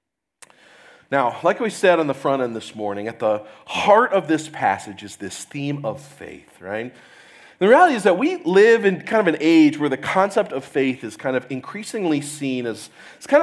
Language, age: English, 30-49